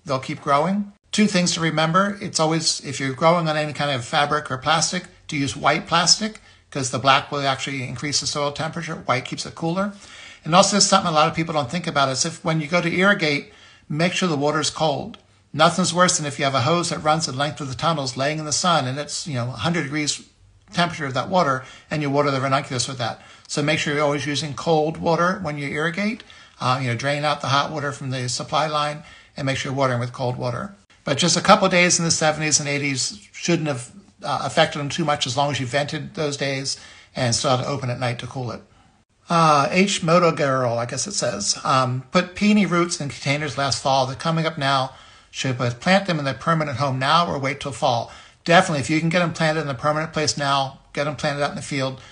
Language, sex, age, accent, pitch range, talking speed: English, male, 60-79, American, 135-165 Hz, 245 wpm